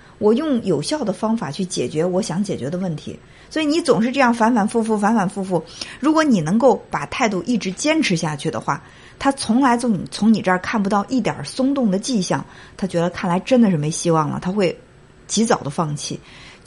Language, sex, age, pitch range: Chinese, female, 50-69, 170-230 Hz